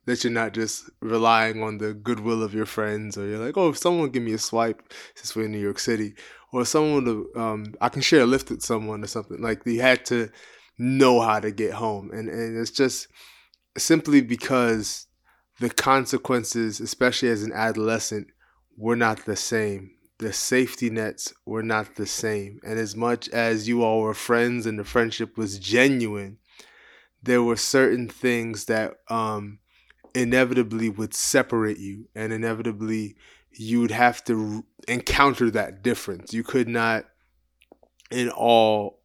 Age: 20-39